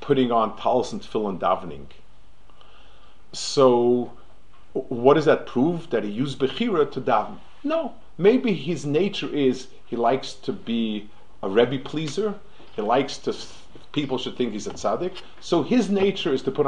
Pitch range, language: 120-185 Hz, English